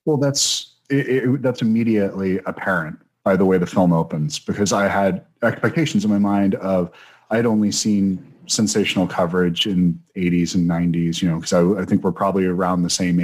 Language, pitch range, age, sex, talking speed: English, 90-100 Hz, 30-49, male, 190 wpm